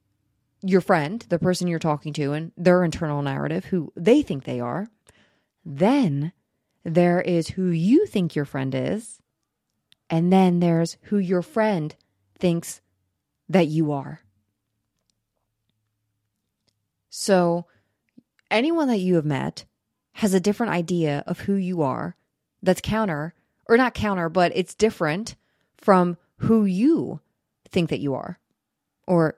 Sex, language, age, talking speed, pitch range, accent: female, English, 30-49, 135 wpm, 155-200 Hz, American